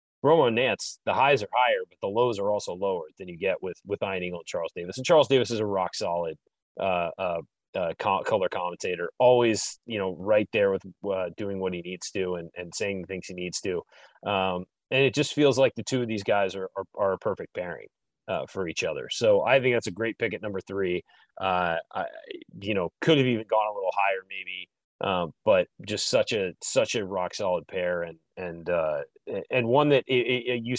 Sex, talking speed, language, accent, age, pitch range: male, 225 wpm, English, American, 30-49, 100-150 Hz